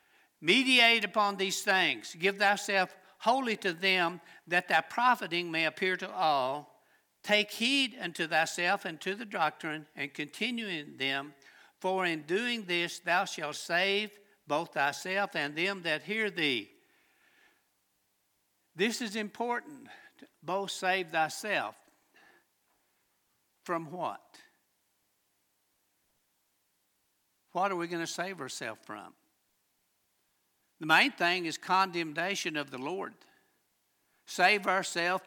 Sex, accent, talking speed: male, American, 115 wpm